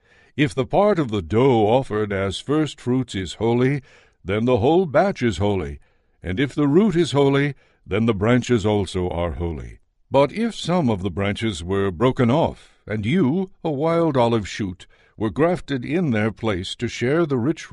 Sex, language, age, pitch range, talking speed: male, English, 60-79, 105-145 Hz, 185 wpm